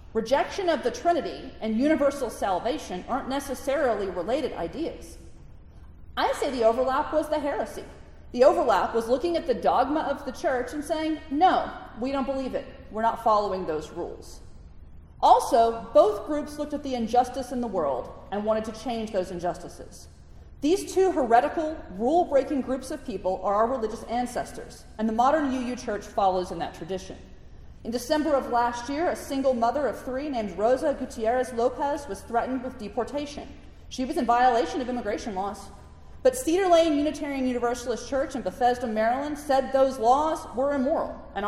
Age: 40-59